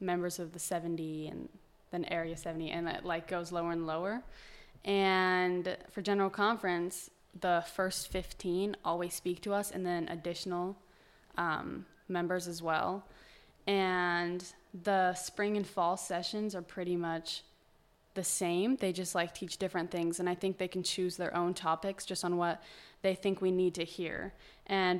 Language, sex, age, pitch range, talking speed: English, female, 20-39, 175-195 Hz, 165 wpm